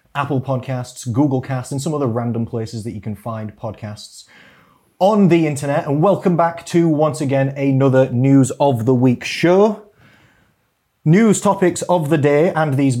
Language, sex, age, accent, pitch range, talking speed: English, male, 30-49, British, 115-150 Hz, 165 wpm